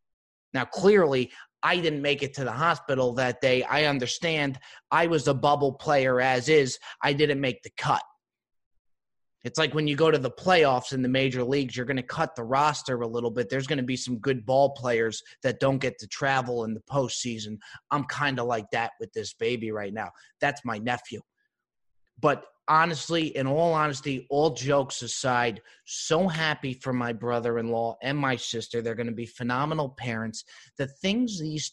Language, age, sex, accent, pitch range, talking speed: English, 20-39, male, American, 125-150 Hz, 190 wpm